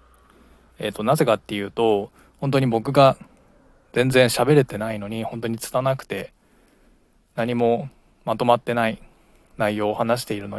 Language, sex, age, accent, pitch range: Japanese, male, 20-39, native, 105-125 Hz